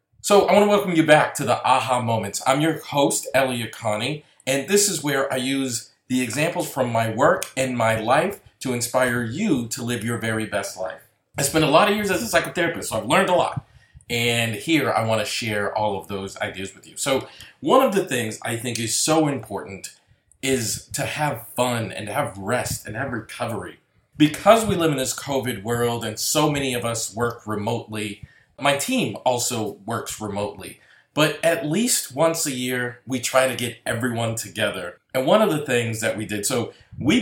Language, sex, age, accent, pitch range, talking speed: English, male, 40-59, American, 110-135 Hz, 205 wpm